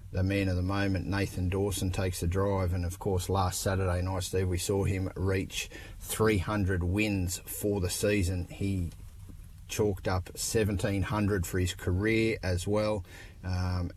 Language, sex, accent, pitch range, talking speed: English, male, Australian, 90-105 Hz, 155 wpm